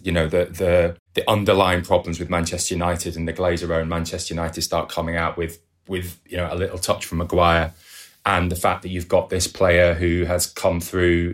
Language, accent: English, British